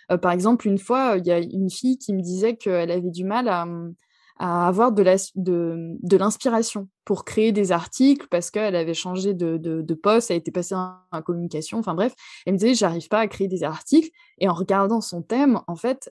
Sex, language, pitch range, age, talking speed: female, French, 180-235 Hz, 20-39, 240 wpm